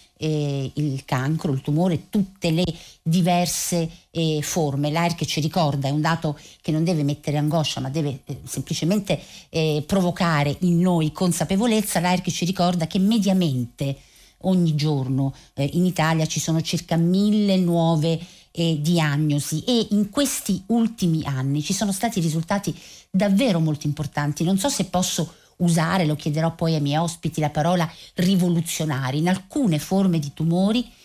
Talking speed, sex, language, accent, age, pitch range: 150 wpm, female, Italian, native, 50-69, 155-190 Hz